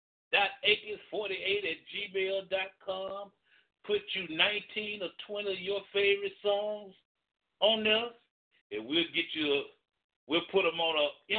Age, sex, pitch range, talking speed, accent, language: 60-79, male, 165-215 Hz, 130 wpm, American, English